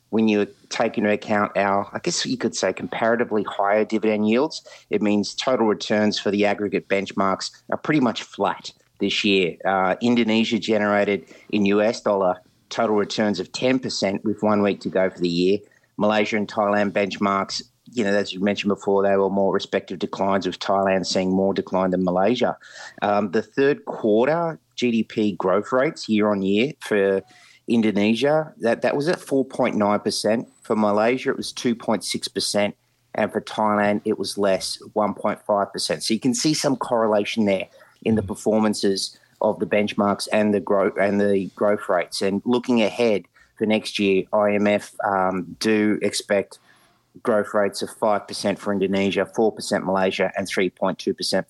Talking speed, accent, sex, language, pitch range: 155 wpm, Australian, male, English, 95-110 Hz